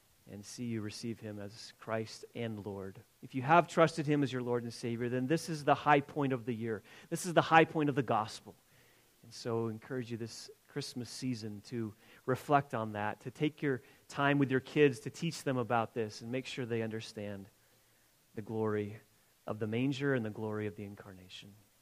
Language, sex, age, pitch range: English, male, 30-49, 120-155 Hz